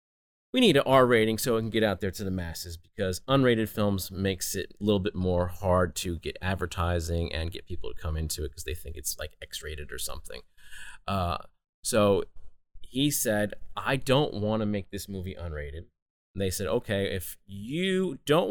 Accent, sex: American, male